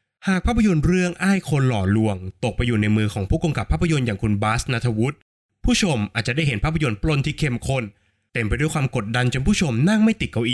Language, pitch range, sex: Thai, 105-150 Hz, male